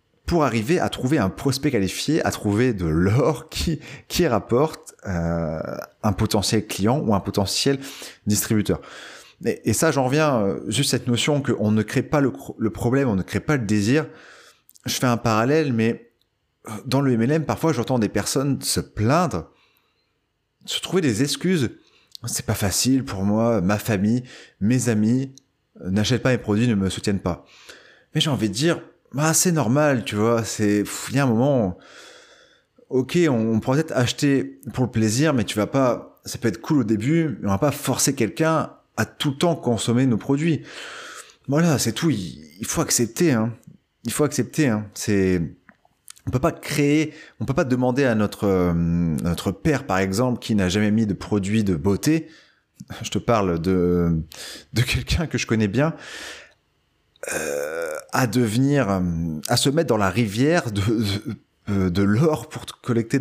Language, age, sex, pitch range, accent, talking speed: French, 30-49, male, 105-145 Hz, French, 180 wpm